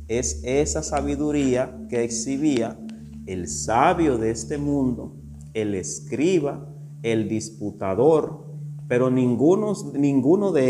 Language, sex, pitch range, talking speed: Spanish, male, 105-145 Hz, 100 wpm